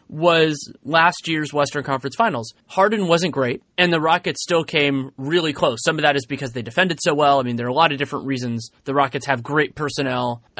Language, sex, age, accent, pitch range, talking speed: English, male, 30-49, American, 135-170 Hz, 220 wpm